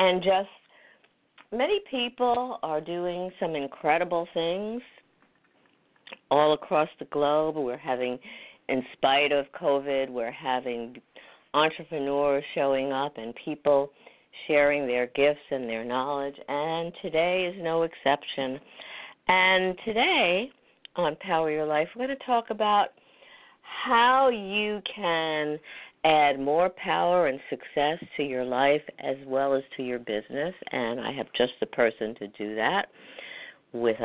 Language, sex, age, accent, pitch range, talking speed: English, female, 50-69, American, 125-165 Hz, 130 wpm